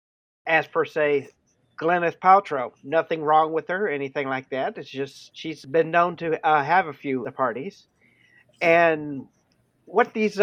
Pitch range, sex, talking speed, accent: 145-180 Hz, male, 160 wpm, American